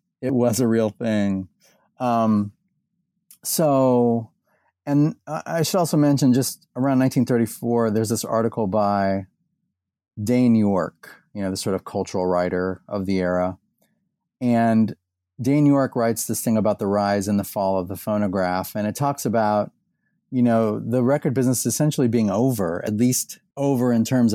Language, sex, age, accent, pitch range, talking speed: English, male, 30-49, American, 100-130 Hz, 155 wpm